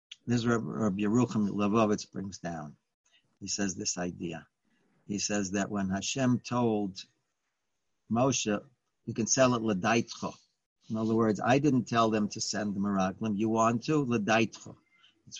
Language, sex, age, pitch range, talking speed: English, male, 50-69, 100-115 Hz, 155 wpm